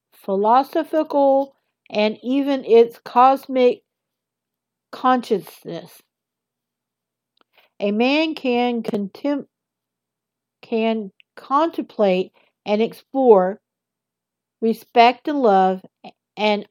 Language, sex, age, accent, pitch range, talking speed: English, female, 60-79, American, 195-250 Hz, 65 wpm